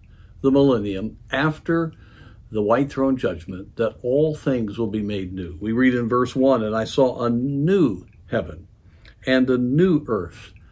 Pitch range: 100-135 Hz